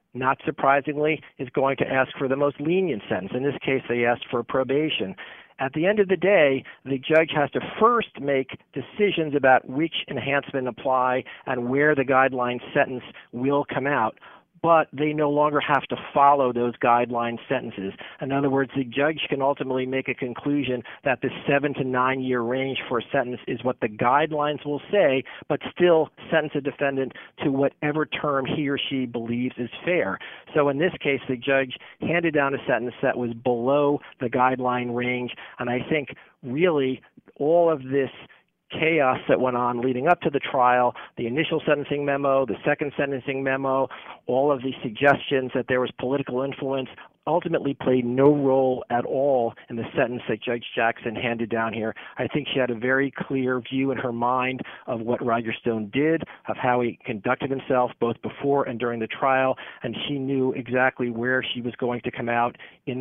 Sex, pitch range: male, 125-145 Hz